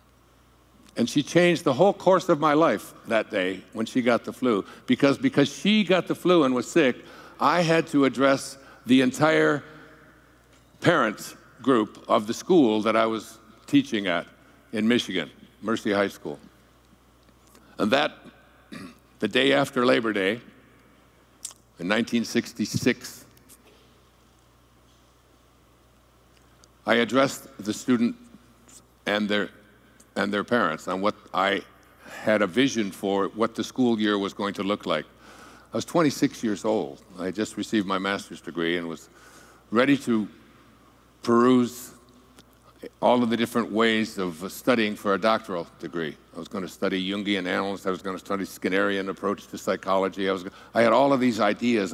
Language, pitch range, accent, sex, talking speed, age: English, 100-130 Hz, American, male, 155 wpm, 60-79